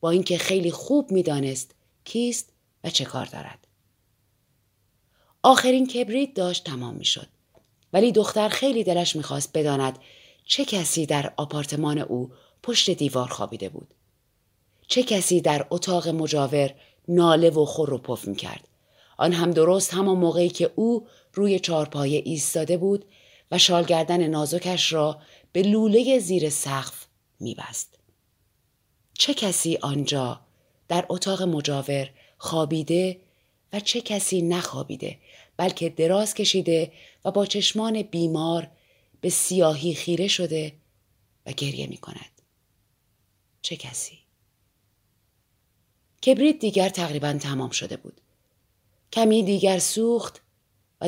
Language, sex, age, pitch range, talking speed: Persian, female, 30-49, 130-190 Hz, 115 wpm